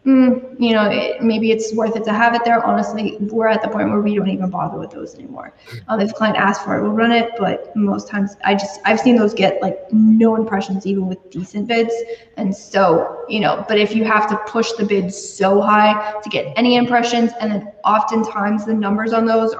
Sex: female